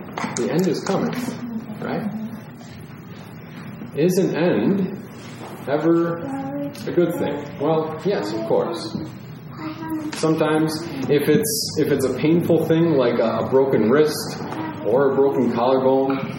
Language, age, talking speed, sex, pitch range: English, 30-49, 115 wpm, male, 135-200 Hz